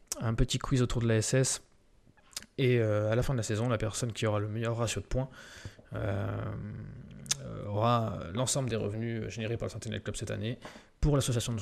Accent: French